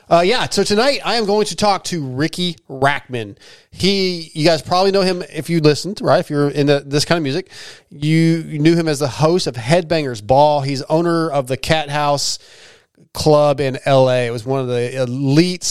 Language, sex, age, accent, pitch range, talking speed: English, male, 30-49, American, 130-165 Hz, 205 wpm